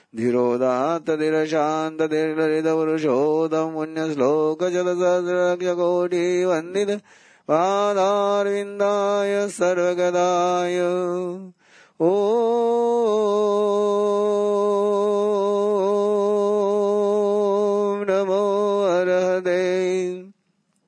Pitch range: 160-200 Hz